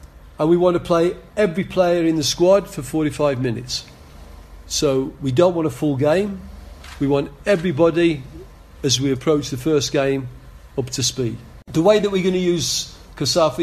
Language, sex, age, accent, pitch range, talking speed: English, male, 50-69, British, 135-170 Hz, 175 wpm